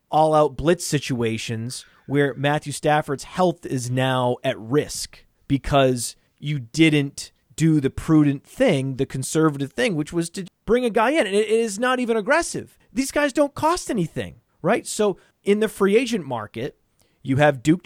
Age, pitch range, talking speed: 30-49, 130-170 Hz, 165 wpm